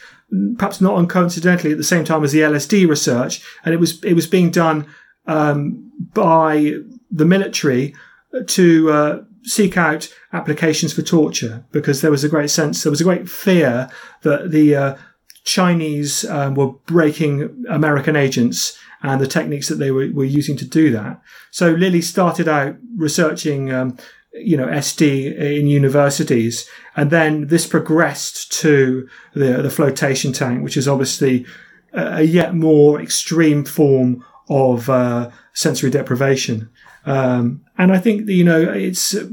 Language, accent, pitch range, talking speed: English, British, 140-170 Hz, 155 wpm